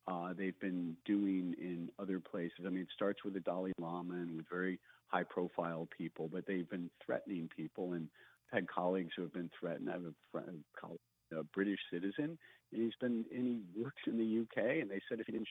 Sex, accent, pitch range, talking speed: male, American, 85-105 Hz, 215 wpm